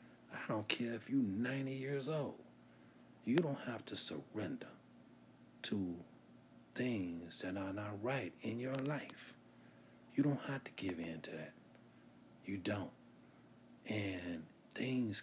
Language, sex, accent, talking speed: English, male, American, 135 wpm